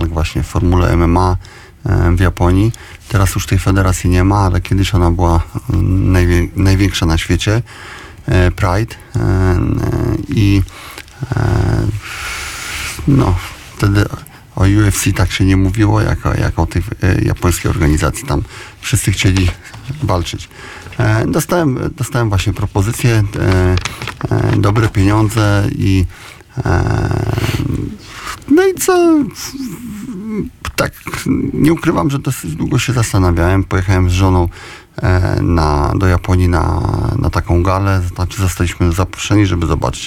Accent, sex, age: native, male, 30-49